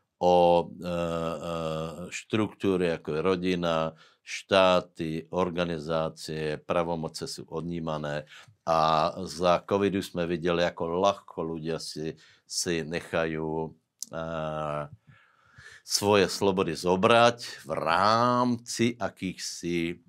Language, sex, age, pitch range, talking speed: Slovak, male, 60-79, 80-95 Hz, 85 wpm